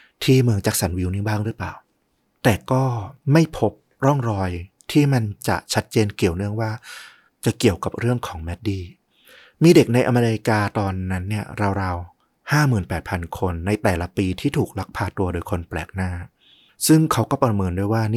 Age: 30-49